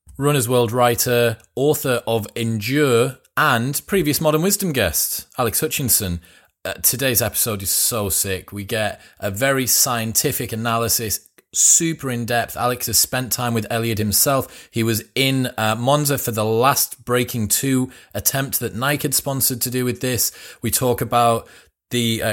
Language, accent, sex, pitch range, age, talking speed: English, British, male, 100-130 Hz, 30-49, 155 wpm